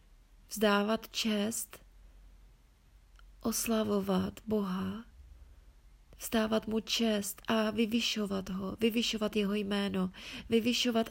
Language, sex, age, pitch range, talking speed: Czech, female, 30-49, 190-215 Hz, 75 wpm